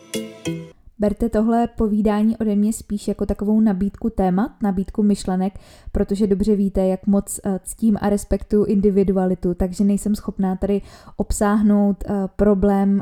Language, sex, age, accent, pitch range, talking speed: Czech, female, 20-39, native, 190-210 Hz, 125 wpm